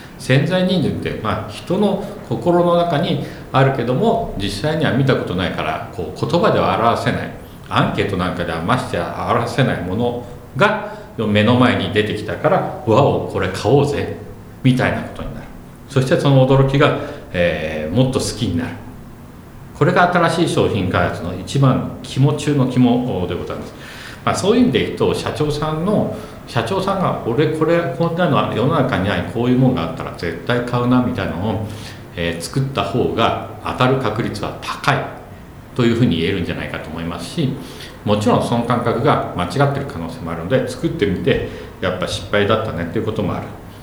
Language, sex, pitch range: Japanese, male, 95-135 Hz